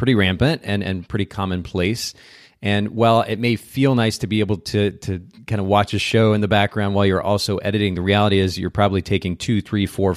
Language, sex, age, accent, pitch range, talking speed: English, male, 30-49, American, 95-115 Hz, 225 wpm